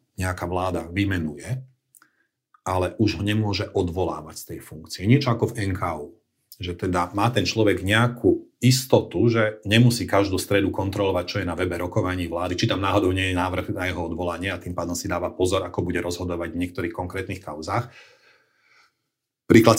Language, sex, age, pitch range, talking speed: Slovak, male, 40-59, 90-115 Hz, 165 wpm